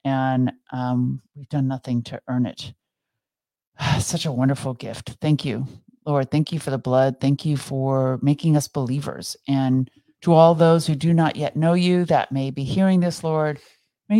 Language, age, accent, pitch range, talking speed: English, 50-69, American, 130-150 Hz, 180 wpm